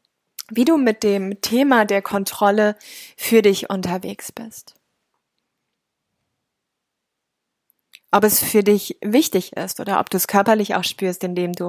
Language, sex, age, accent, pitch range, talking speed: German, female, 20-39, German, 195-225 Hz, 135 wpm